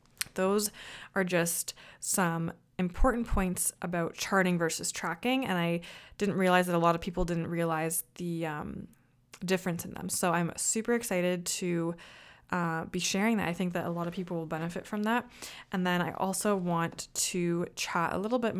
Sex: female